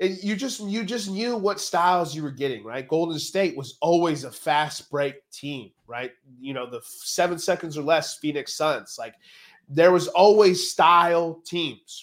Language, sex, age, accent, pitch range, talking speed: English, male, 20-39, American, 135-175 Hz, 175 wpm